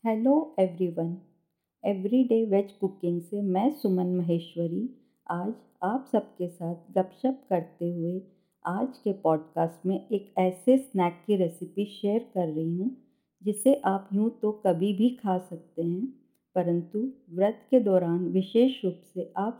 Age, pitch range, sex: 50-69, 170-220 Hz, female